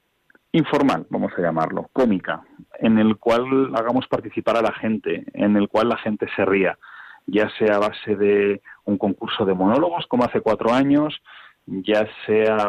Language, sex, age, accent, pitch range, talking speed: Spanish, male, 40-59, Spanish, 110-135 Hz, 170 wpm